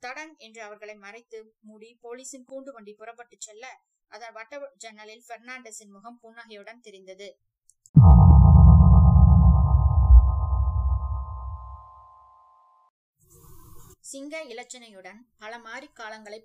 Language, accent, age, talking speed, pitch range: Tamil, native, 20-39, 45 wpm, 195-240 Hz